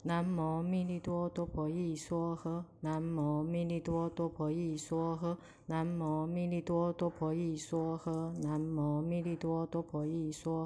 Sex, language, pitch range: female, Chinese, 160-170 Hz